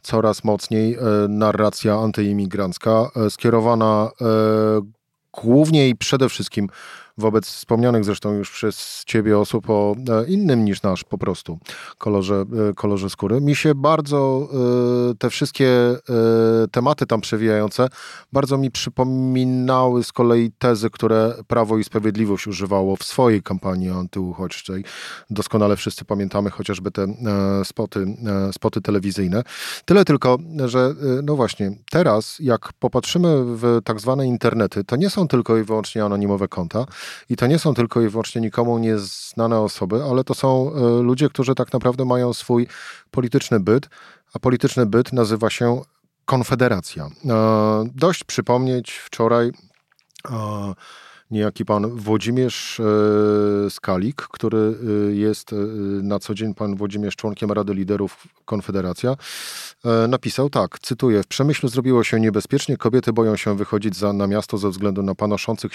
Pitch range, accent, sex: 105-125 Hz, native, male